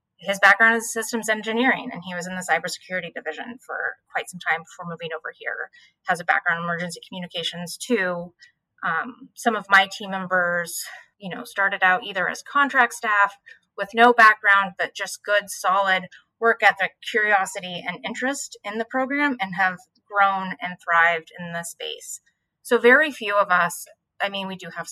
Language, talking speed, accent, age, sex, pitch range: English, 180 wpm, American, 20-39, female, 180-230 Hz